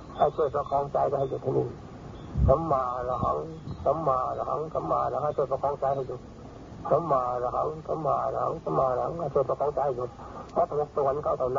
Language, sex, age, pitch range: Thai, male, 60-79, 130-150 Hz